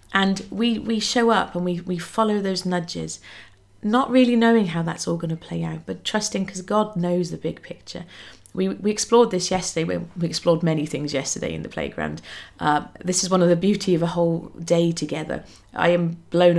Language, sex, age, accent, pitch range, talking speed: English, female, 30-49, British, 165-215 Hz, 205 wpm